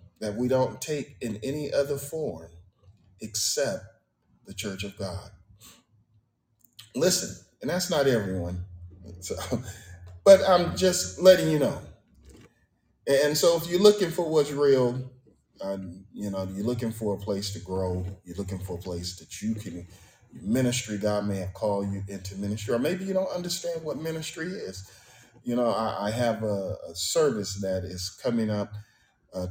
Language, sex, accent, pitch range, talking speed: English, male, American, 95-120 Hz, 160 wpm